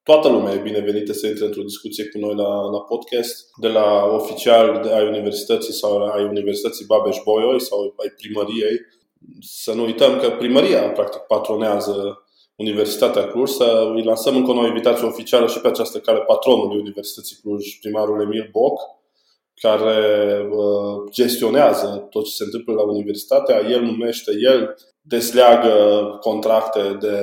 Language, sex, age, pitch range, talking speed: Romanian, male, 20-39, 105-130 Hz, 145 wpm